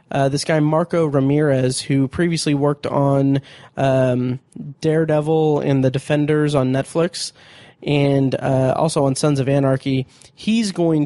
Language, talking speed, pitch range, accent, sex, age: English, 135 wpm, 135-165 Hz, American, male, 20-39